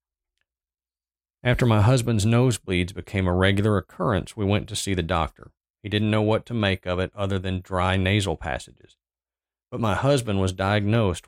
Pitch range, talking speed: 85-110 Hz, 170 wpm